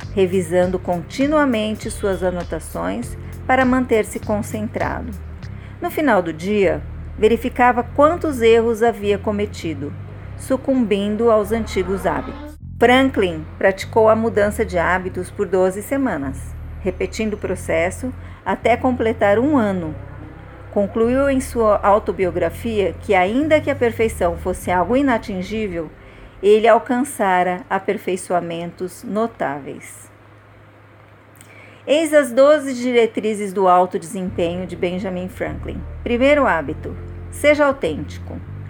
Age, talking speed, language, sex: 50-69, 100 wpm, Portuguese, female